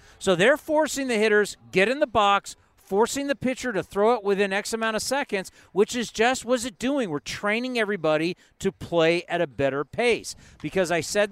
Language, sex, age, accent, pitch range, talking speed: English, male, 50-69, American, 160-225 Hz, 200 wpm